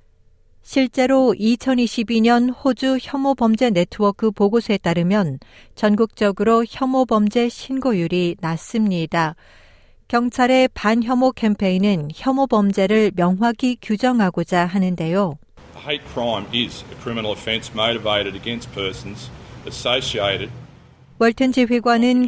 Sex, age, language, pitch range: female, 50-69, Korean, 170-230 Hz